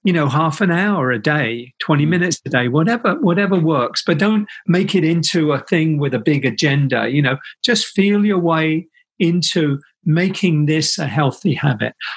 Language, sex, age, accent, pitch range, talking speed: English, male, 50-69, British, 140-175 Hz, 180 wpm